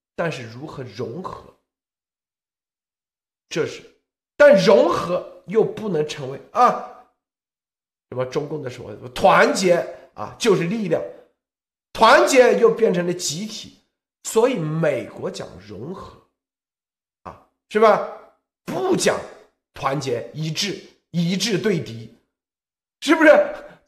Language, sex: Chinese, male